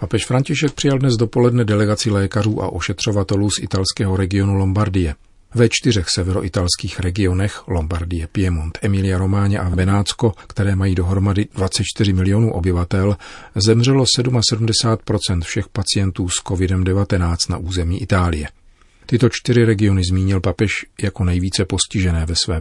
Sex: male